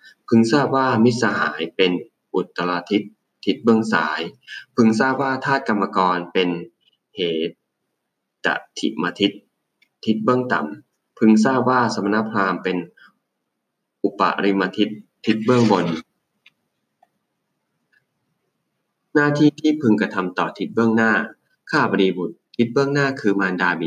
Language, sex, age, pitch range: English, male, 20-39, 90-115 Hz